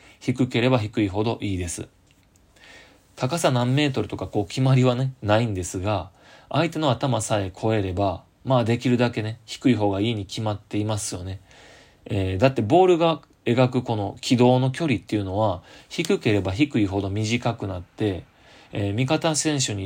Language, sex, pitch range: Japanese, male, 100-125 Hz